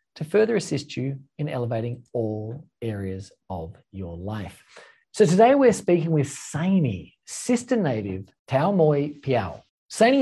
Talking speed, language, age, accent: 135 wpm, English, 40-59, Australian